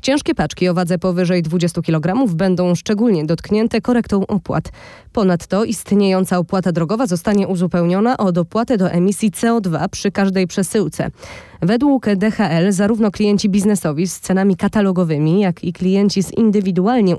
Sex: female